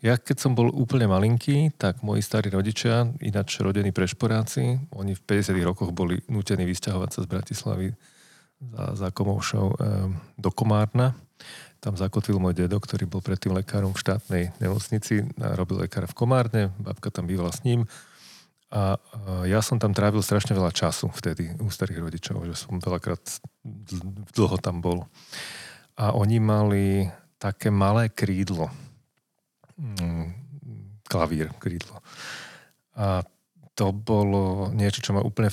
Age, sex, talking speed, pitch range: 40-59, male, 145 wpm, 95-115 Hz